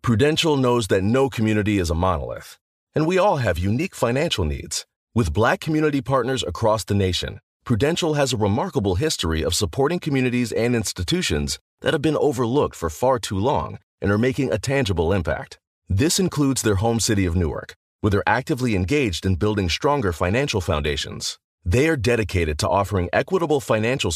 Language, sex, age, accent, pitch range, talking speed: English, male, 30-49, American, 90-135 Hz, 170 wpm